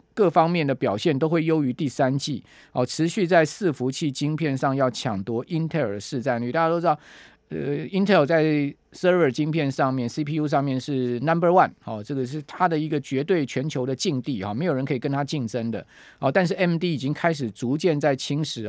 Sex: male